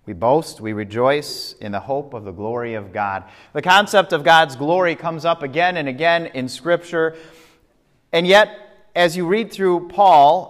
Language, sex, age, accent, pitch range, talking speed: English, male, 30-49, American, 125-170 Hz, 175 wpm